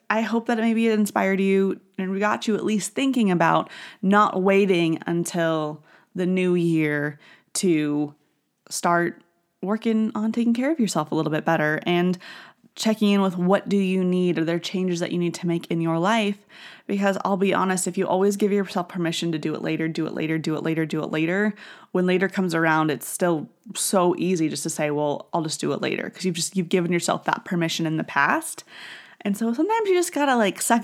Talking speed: 220 wpm